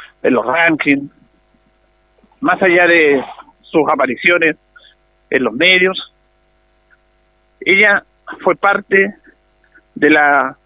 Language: Spanish